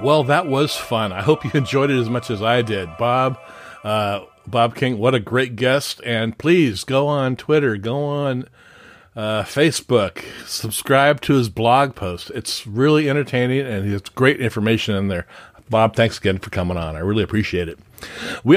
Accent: American